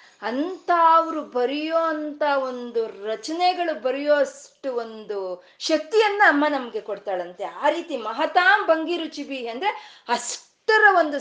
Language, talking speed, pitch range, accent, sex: Kannada, 100 wpm, 225-320 Hz, native, female